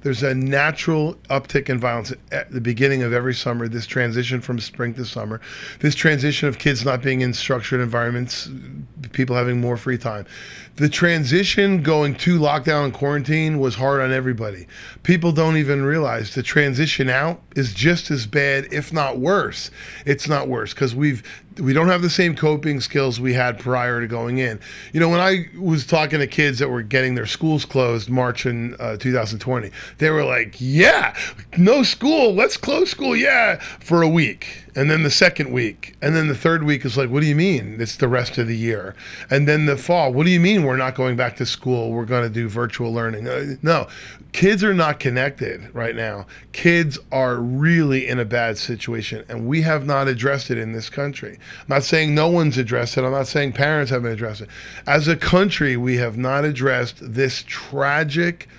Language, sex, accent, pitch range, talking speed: English, male, American, 120-150 Hz, 200 wpm